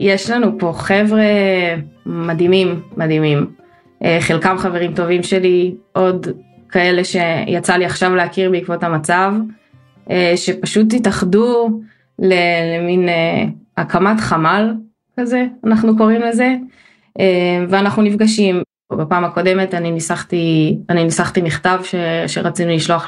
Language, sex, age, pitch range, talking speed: Hebrew, female, 20-39, 170-205 Hz, 100 wpm